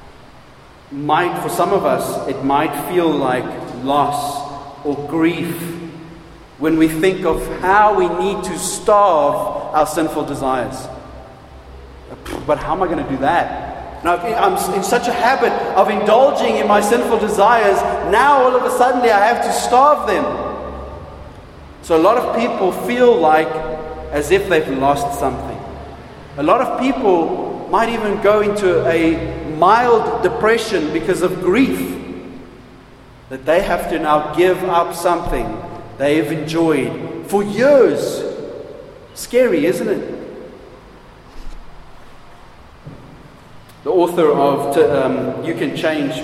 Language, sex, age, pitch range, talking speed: English, male, 40-59, 145-190 Hz, 135 wpm